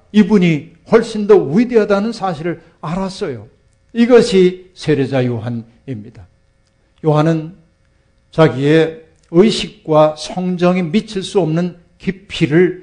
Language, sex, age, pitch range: Korean, male, 50-69, 120-160 Hz